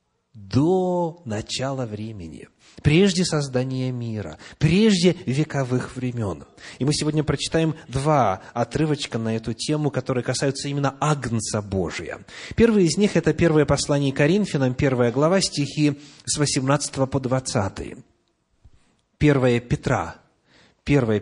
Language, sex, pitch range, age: Russian, male, 120-165 Hz, 30-49